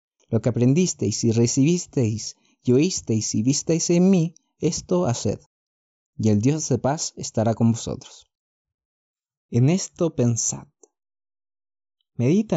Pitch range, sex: 120-175 Hz, male